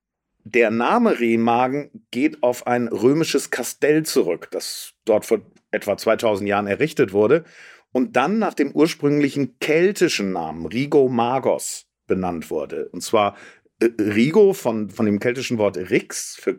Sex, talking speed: male, 135 wpm